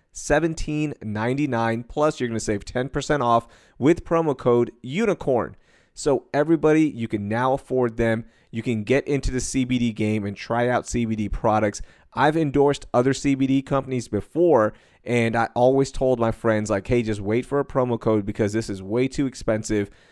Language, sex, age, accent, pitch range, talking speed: English, male, 30-49, American, 110-130 Hz, 170 wpm